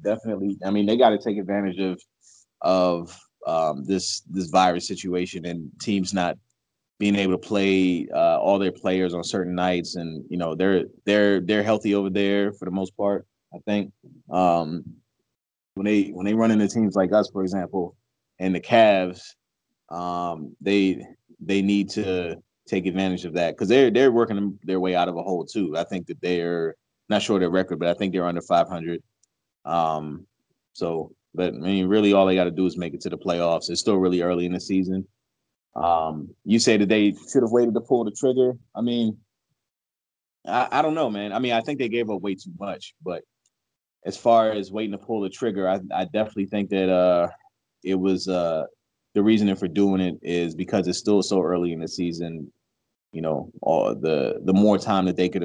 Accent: American